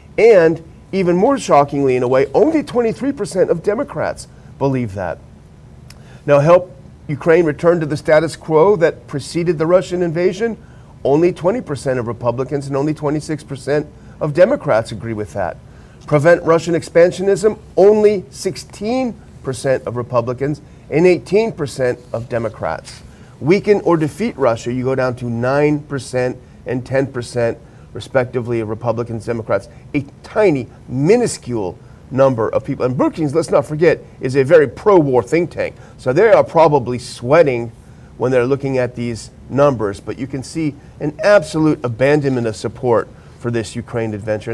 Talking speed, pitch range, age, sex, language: 140 wpm, 125-170 Hz, 40-59, male, English